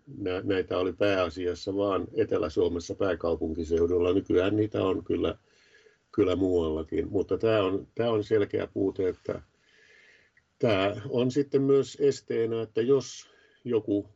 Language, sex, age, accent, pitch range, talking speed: Finnish, male, 50-69, native, 95-115 Hz, 115 wpm